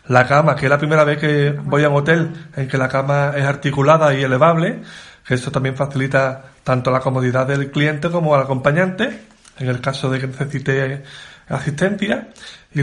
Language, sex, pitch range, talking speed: Spanish, male, 135-165 Hz, 185 wpm